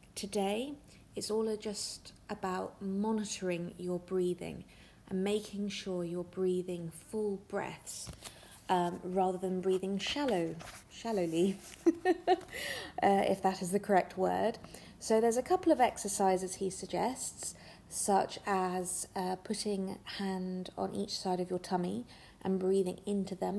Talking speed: 130 wpm